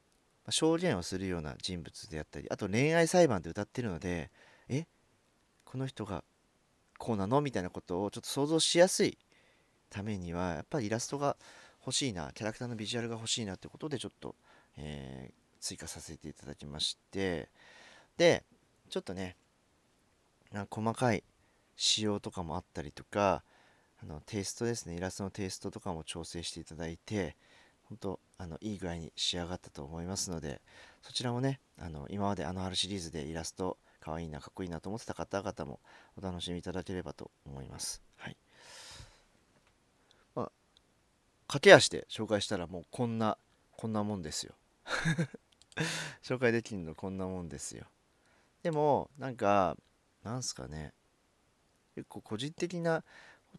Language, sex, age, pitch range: Japanese, male, 40-59, 85-115 Hz